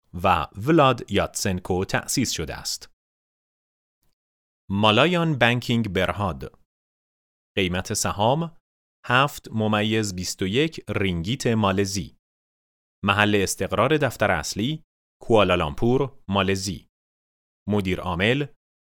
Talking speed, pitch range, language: 75 wpm, 90-120 Hz, Persian